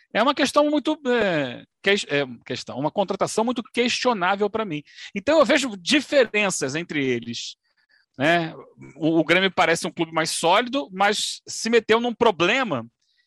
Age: 40-59